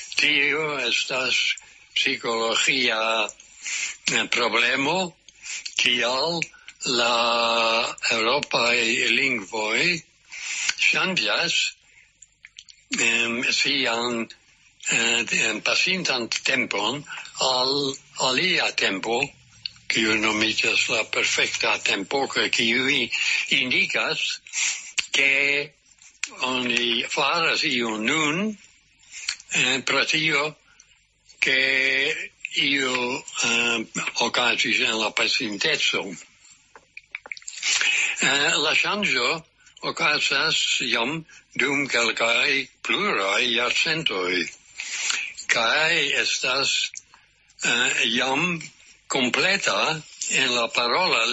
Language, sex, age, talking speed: English, male, 60-79, 75 wpm